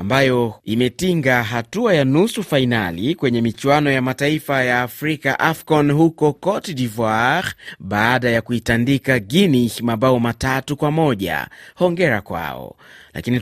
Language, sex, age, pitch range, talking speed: Swahili, male, 30-49, 120-150 Hz, 120 wpm